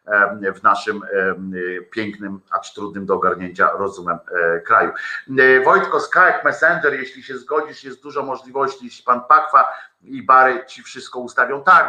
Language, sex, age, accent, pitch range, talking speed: Polish, male, 50-69, native, 120-145 Hz, 140 wpm